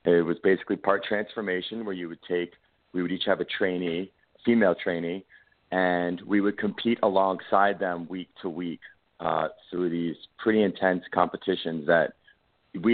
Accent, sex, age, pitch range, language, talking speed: American, male, 40-59, 85-100 Hz, English, 160 wpm